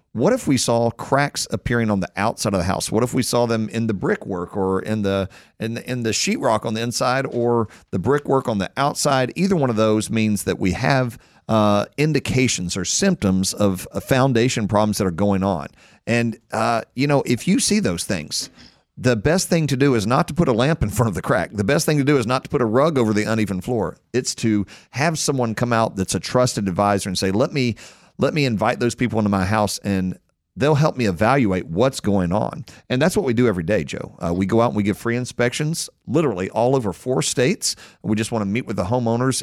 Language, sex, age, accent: English, male, 40-59, American